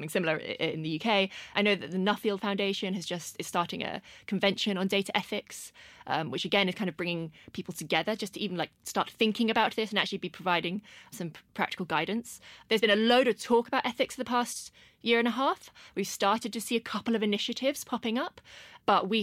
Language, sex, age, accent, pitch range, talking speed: English, female, 20-39, British, 180-220 Hz, 215 wpm